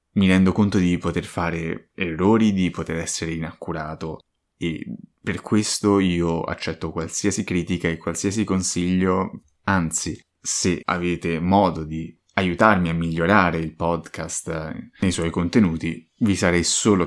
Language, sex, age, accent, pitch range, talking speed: Italian, male, 20-39, native, 85-95 Hz, 130 wpm